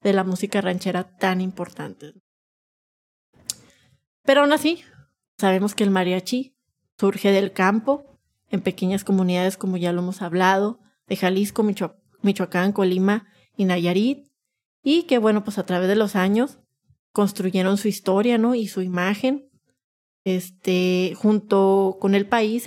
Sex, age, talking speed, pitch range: female, 30-49, 140 wpm, 185-220 Hz